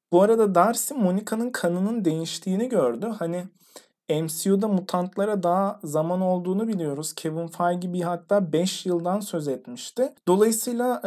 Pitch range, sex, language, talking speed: 165-205 Hz, male, Turkish, 125 wpm